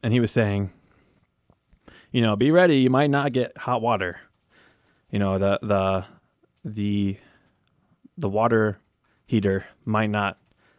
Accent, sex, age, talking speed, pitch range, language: American, male, 20-39, 135 wpm, 100-125 Hz, English